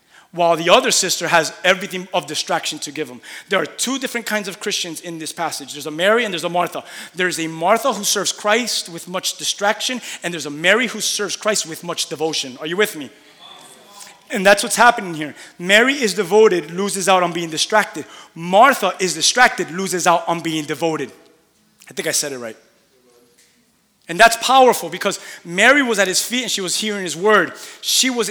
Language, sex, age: English, male, 30-49